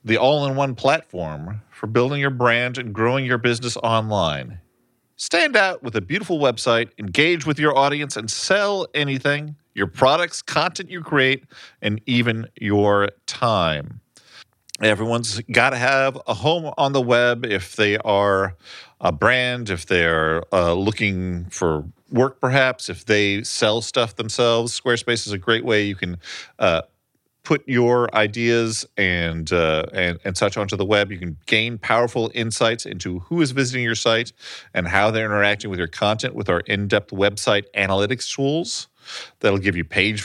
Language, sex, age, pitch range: English, male, 40-59, 100-125 Hz